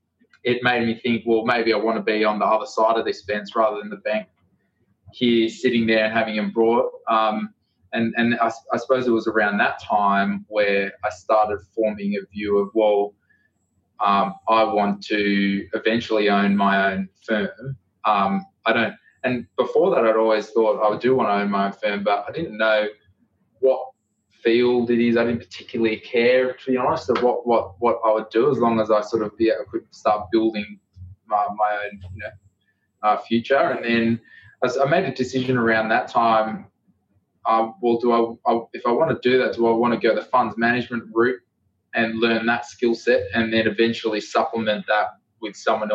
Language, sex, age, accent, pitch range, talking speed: English, male, 20-39, Australian, 105-115 Hz, 200 wpm